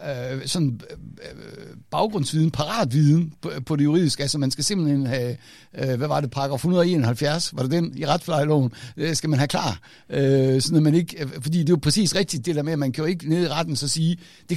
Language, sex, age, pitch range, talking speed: Danish, male, 60-79, 140-180 Hz, 205 wpm